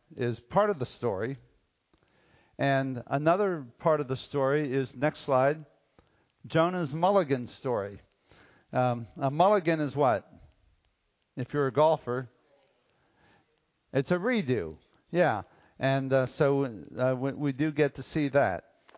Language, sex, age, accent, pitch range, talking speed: English, male, 50-69, American, 120-155 Hz, 130 wpm